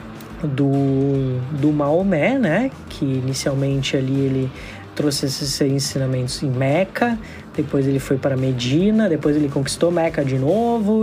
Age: 20-39